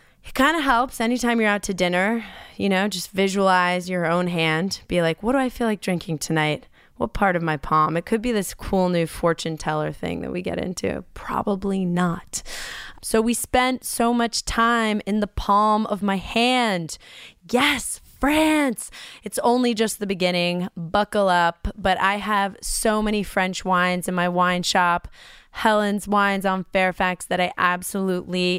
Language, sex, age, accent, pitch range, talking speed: English, female, 20-39, American, 175-215 Hz, 175 wpm